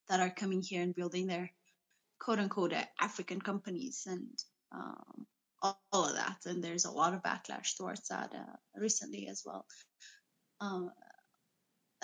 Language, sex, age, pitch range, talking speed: Amharic, female, 20-39, 190-245 Hz, 150 wpm